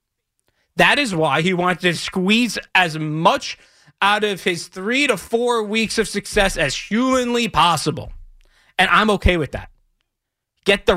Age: 30-49